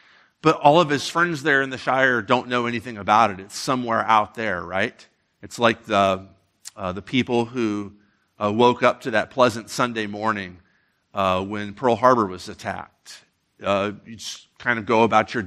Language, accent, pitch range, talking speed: English, American, 95-115 Hz, 185 wpm